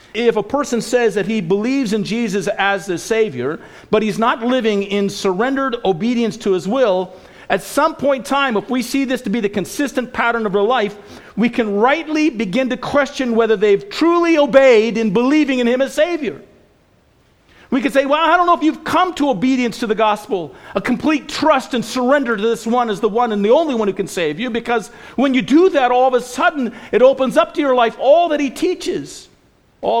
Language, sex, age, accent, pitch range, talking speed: English, male, 50-69, American, 215-270 Hz, 220 wpm